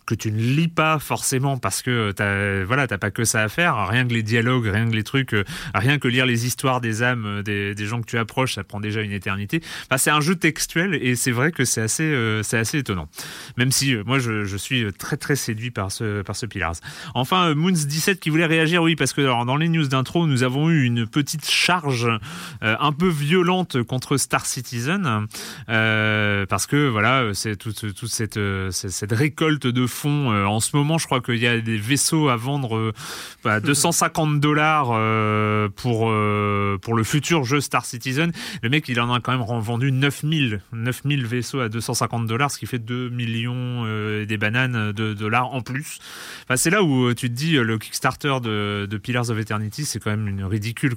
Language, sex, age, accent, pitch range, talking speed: French, male, 30-49, French, 110-145 Hz, 220 wpm